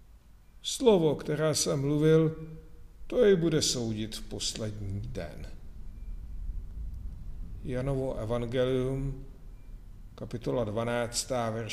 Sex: male